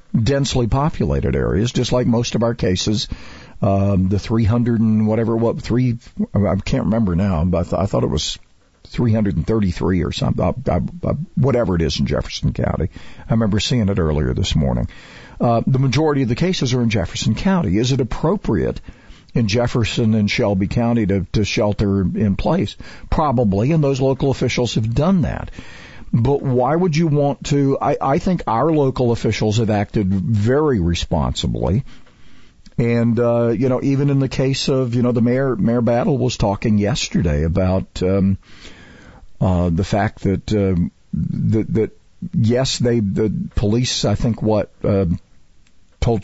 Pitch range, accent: 100-130 Hz, American